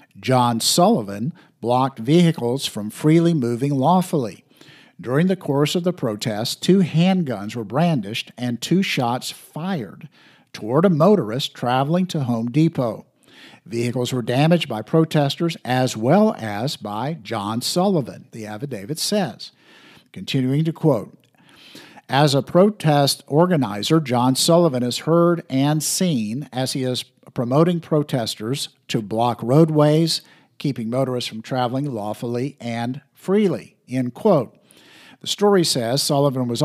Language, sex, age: English, male, 50-69